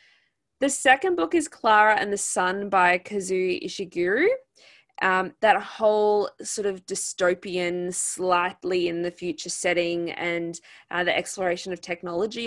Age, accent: 20-39, Australian